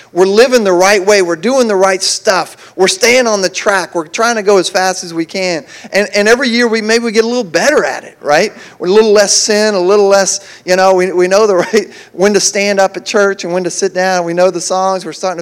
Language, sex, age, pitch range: English, male, 40-59, 185-235 Hz